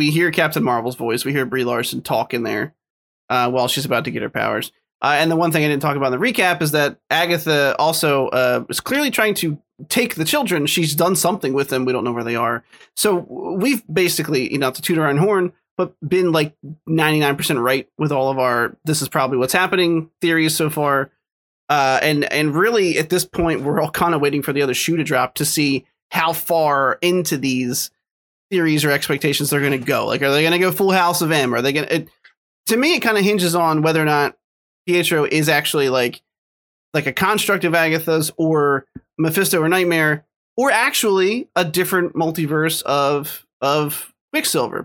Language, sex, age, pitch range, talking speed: English, male, 30-49, 140-175 Hz, 210 wpm